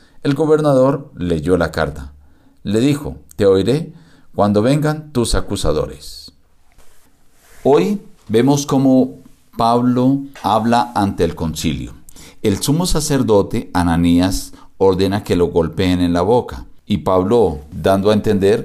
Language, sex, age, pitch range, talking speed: Spanish, male, 50-69, 90-125 Hz, 120 wpm